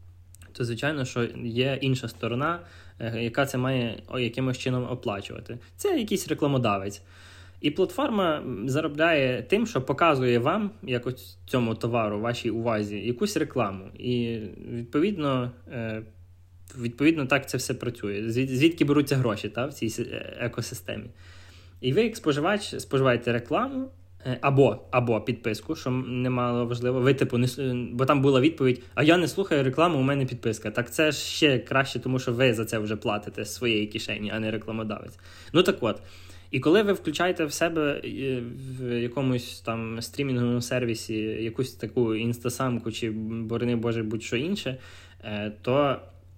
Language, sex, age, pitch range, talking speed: Ukrainian, male, 20-39, 110-135 Hz, 140 wpm